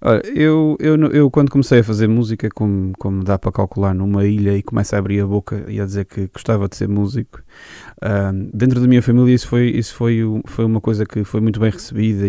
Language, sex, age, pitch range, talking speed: Portuguese, male, 20-39, 105-125 Hz, 230 wpm